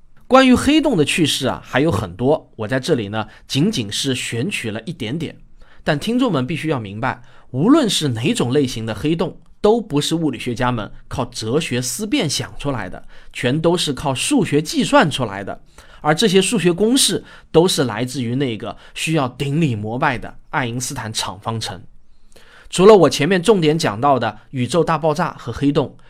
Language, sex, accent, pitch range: English, male, Chinese, 125-175 Hz